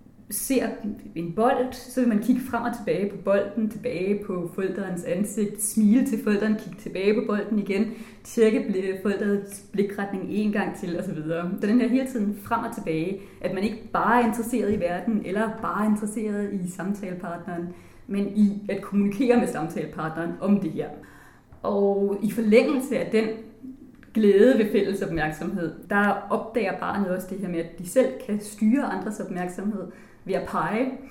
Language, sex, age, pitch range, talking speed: Danish, female, 30-49, 175-220 Hz, 170 wpm